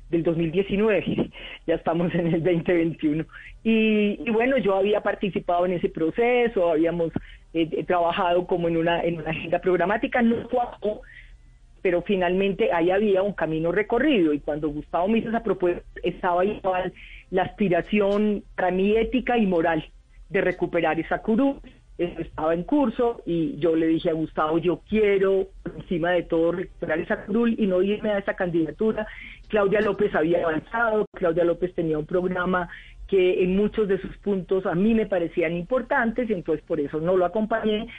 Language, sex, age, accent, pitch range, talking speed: Spanish, female, 40-59, Colombian, 170-215 Hz, 165 wpm